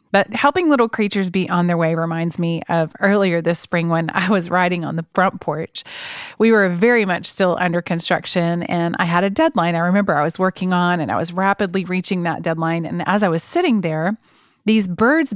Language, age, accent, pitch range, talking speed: English, 30-49, American, 165-215 Hz, 215 wpm